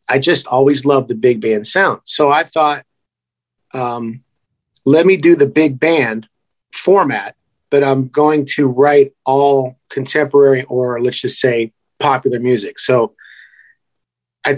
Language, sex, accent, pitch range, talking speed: English, male, American, 125-150 Hz, 140 wpm